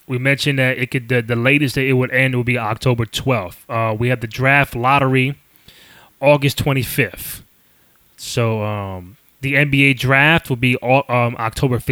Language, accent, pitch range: English, American, 115-140 Hz